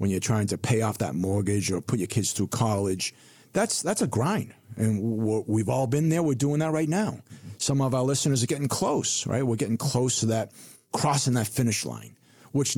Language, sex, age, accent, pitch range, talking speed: English, male, 50-69, American, 100-130 Hz, 215 wpm